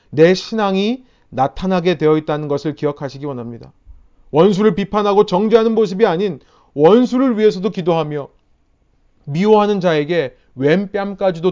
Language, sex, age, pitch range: Korean, male, 30-49, 125-195 Hz